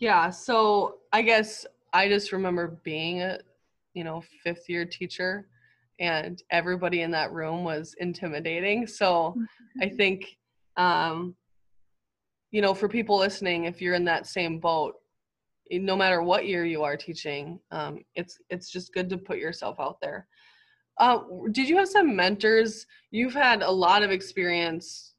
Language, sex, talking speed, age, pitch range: English, female, 155 wpm, 20-39, 170-205 Hz